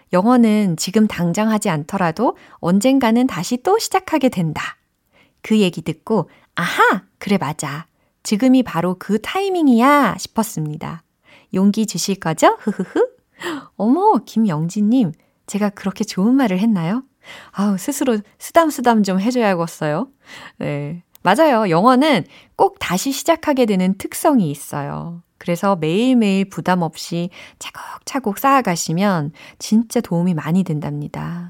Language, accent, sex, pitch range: Korean, native, female, 175-260 Hz